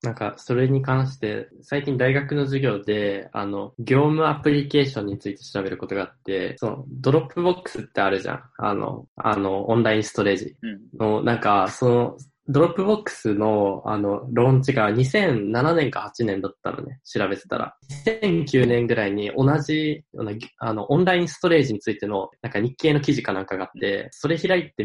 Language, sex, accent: Japanese, male, native